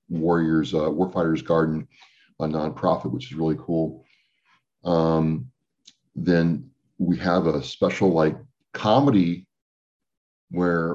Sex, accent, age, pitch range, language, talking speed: male, American, 50-69, 80-95 Hz, English, 105 wpm